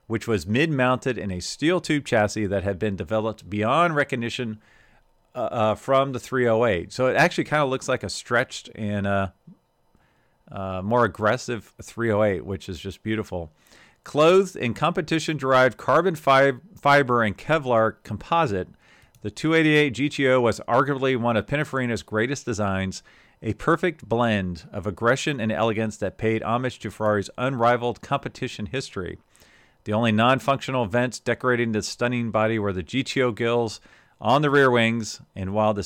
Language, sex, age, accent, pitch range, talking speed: English, male, 40-59, American, 105-130 Hz, 150 wpm